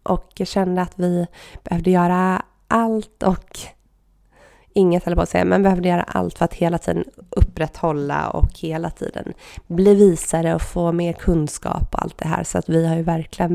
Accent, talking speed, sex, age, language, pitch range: native, 180 wpm, female, 20-39, Swedish, 170-195 Hz